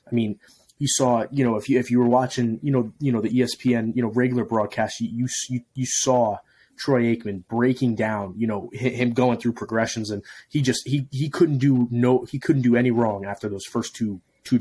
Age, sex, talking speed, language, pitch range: 20-39, male, 220 wpm, English, 115-135 Hz